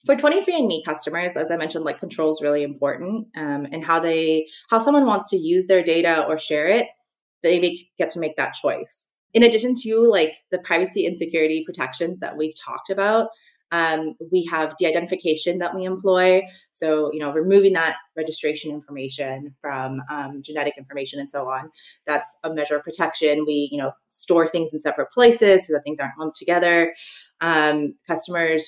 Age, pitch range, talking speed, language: 20-39, 150-185 Hz, 190 wpm, English